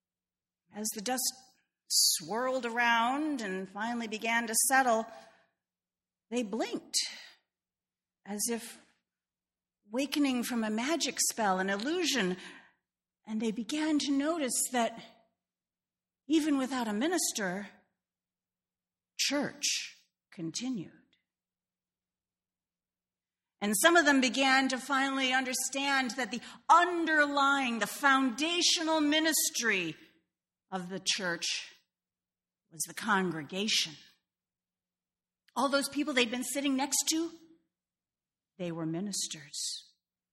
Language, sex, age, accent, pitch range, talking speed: English, female, 40-59, American, 195-280 Hz, 95 wpm